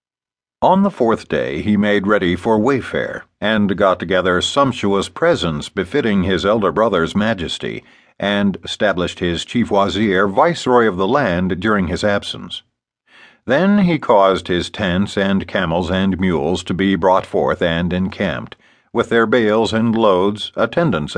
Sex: male